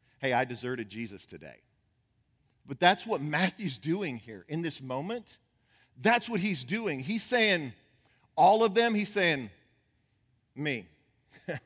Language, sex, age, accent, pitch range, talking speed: English, male, 40-59, American, 115-155 Hz, 135 wpm